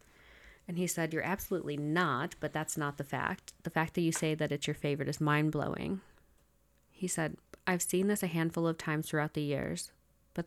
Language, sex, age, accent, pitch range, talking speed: English, female, 30-49, American, 155-175 Hz, 200 wpm